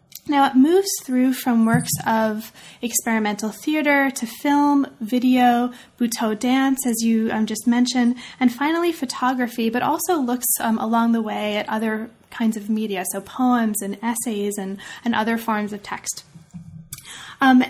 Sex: female